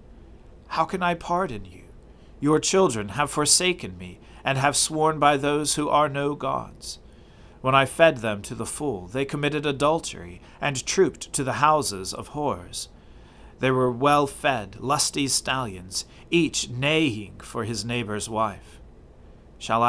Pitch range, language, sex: 110-145 Hz, English, male